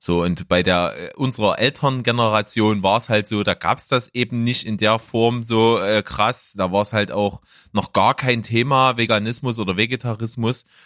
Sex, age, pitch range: male, 30-49, 100-125 Hz